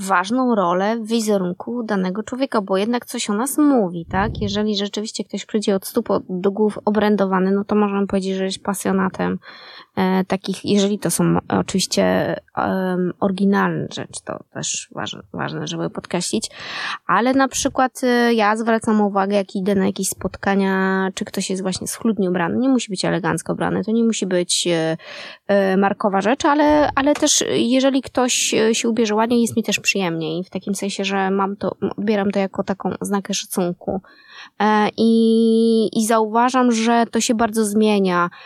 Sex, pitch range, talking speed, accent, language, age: female, 190-225 Hz, 160 wpm, native, Polish, 20-39